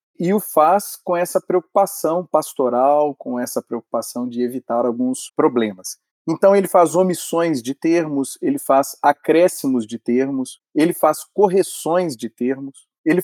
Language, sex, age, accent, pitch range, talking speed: Portuguese, male, 40-59, Brazilian, 135-195 Hz, 140 wpm